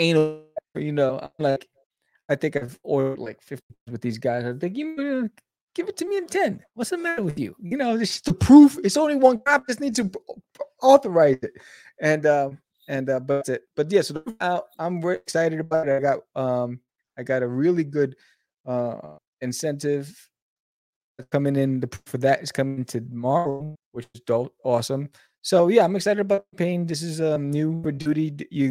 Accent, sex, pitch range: American, male, 125-185 Hz